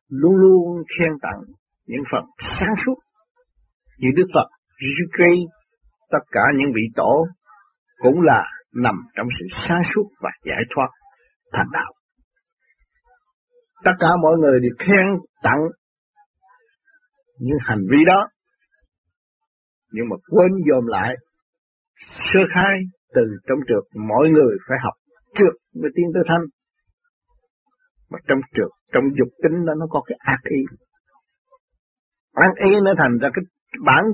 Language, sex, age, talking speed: Vietnamese, male, 60-79, 135 wpm